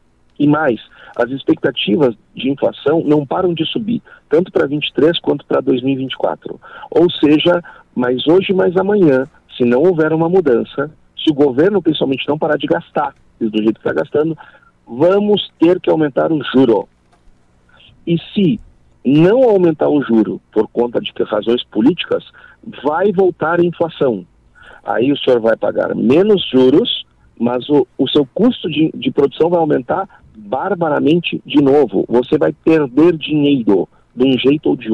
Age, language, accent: 50-69, Portuguese, Brazilian